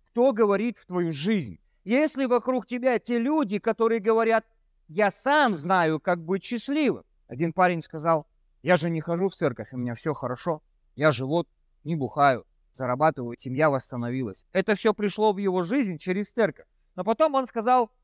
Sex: male